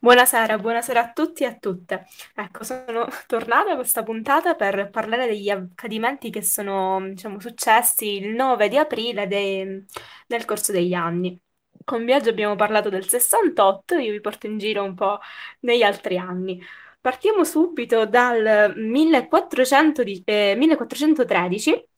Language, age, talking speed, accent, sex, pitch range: Italian, 10-29, 130 wpm, native, female, 200-270 Hz